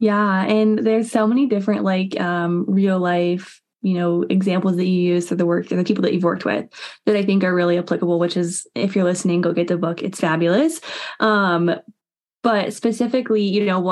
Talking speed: 205 wpm